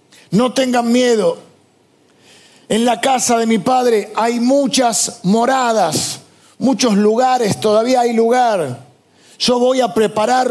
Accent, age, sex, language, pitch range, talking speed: Argentinian, 50-69, male, Spanish, 160-225 Hz, 120 wpm